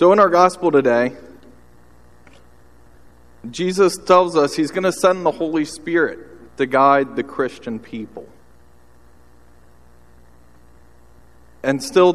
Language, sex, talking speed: English, male, 110 wpm